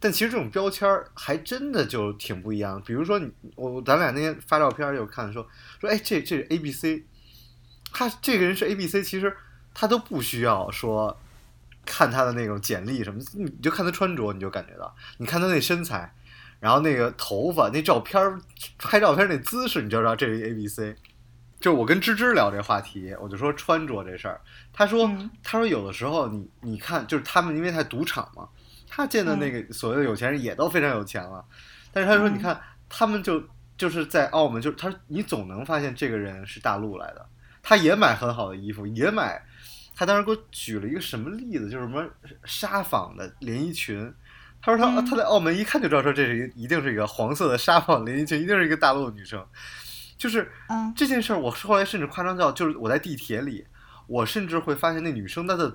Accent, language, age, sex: native, Chinese, 20-39, male